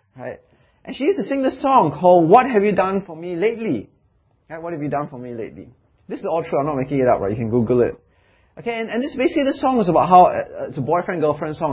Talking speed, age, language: 270 wpm, 30-49, English